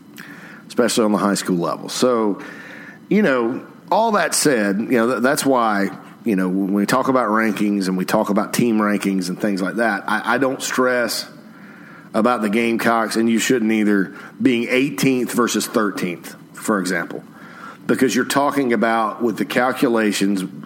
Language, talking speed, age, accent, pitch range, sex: English, 165 wpm, 40-59, American, 105-125 Hz, male